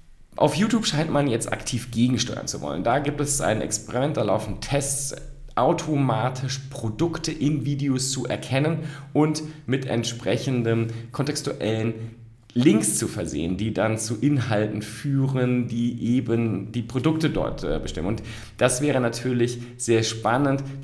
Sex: male